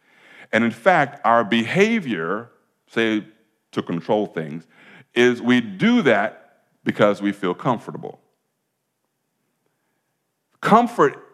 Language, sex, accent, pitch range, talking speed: English, male, American, 125-205 Hz, 95 wpm